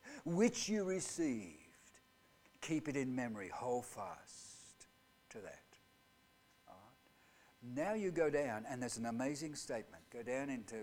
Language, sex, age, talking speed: English, male, 60-79, 125 wpm